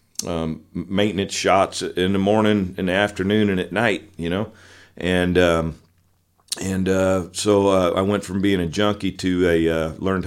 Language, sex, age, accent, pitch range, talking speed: English, male, 40-59, American, 85-95 Hz, 175 wpm